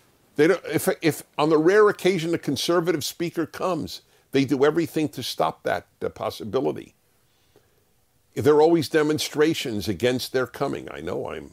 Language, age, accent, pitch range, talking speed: Swedish, 50-69, American, 115-170 Hz, 155 wpm